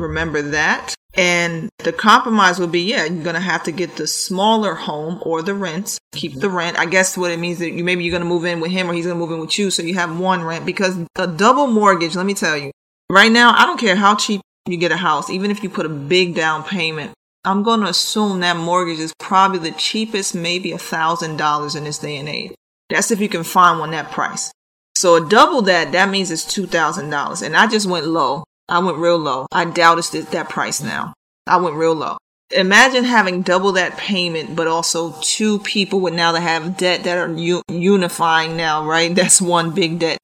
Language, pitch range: English, 165-190 Hz